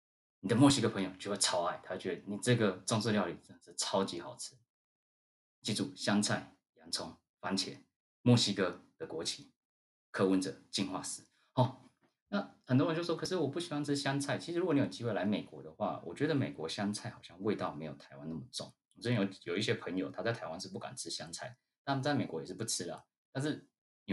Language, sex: Chinese, male